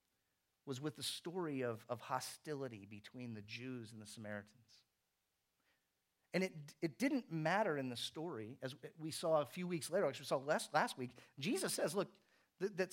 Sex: male